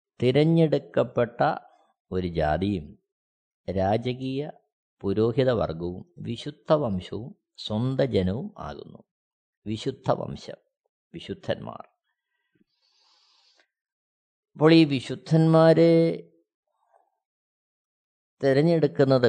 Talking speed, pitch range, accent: 50 wpm, 115-160 Hz, native